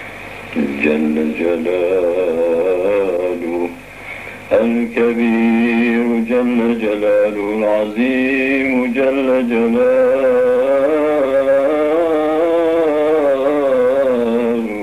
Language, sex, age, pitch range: Turkish, male, 60-79, 105-135 Hz